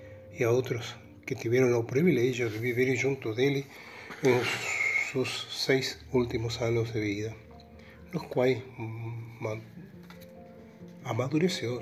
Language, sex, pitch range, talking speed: Portuguese, male, 115-130 Hz, 110 wpm